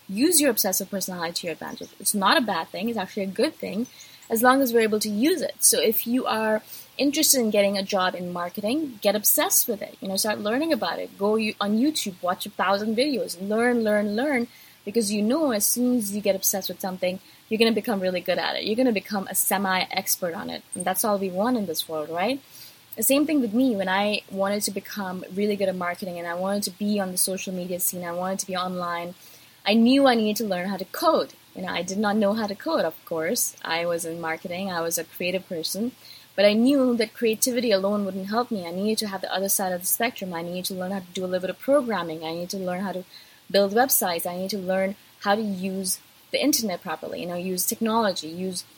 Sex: female